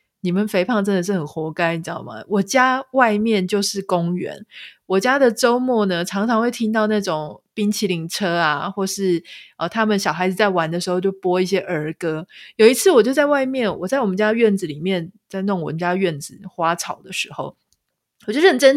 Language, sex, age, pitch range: Chinese, female, 20-39, 190-260 Hz